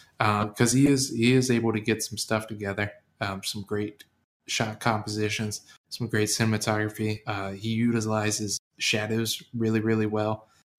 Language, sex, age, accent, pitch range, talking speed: English, male, 20-39, American, 100-110 Hz, 150 wpm